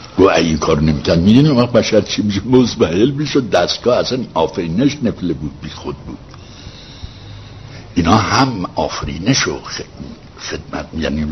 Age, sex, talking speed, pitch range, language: 60-79, male, 125 wpm, 80-120 Hz, Persian